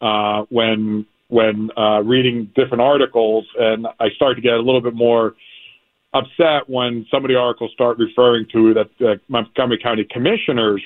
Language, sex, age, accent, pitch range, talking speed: English, male, 50-69, American, 110-125 Hz, 165 wpm